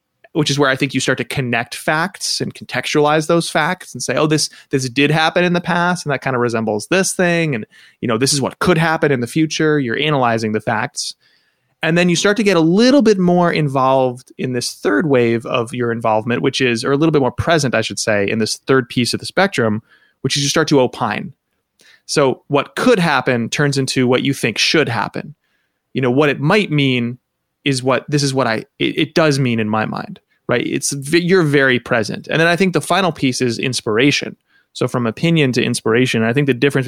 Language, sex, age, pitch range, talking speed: English, male, 20-39, 120-155 Hz, 230 wpm